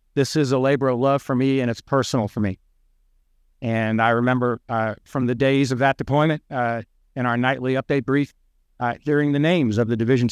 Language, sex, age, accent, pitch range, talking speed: English, male, 50-69, American, 115-145 Hz, 210 wpm